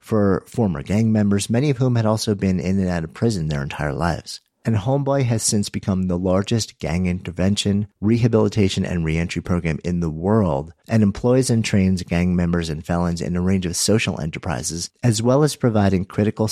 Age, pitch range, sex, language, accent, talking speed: 50-69, 90-115 Hz, male, English, American, 195 wpm